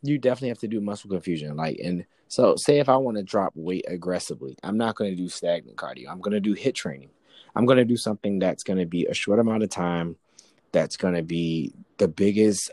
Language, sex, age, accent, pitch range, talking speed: English, male, 20-39, American, 85-100 Hz, 240 wpm